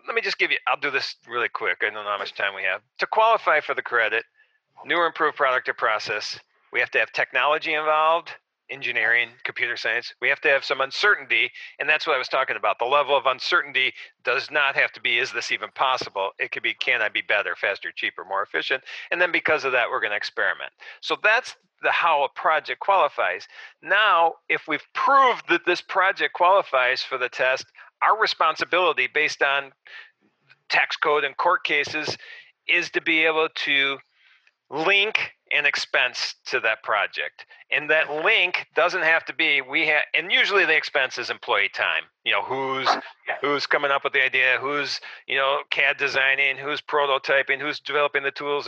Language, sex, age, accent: English, male, 50-69, American